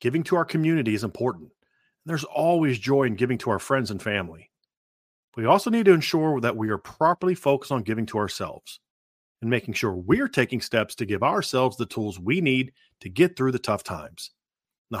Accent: American